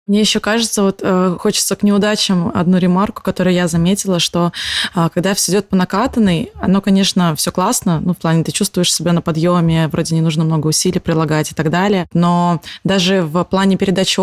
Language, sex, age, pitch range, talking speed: Russian, female, 20-39, 180-210 Hz, 195 wpm